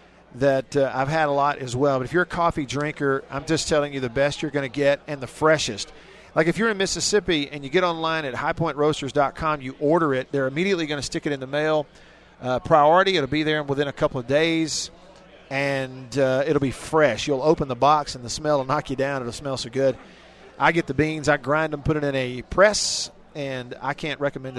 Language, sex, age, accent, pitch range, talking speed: English, male, 40-59, American, 130-155 Hz, 235 wpm